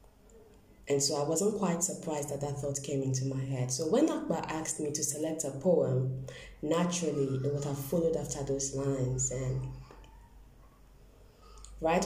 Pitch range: 130-160 Hz